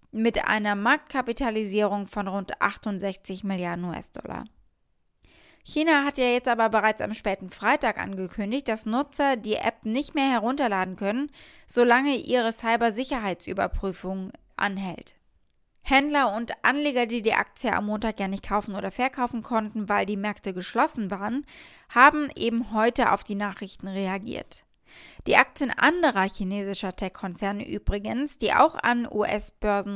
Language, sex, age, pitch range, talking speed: German, female, 20-39, 205-255 Hz, 130 wpm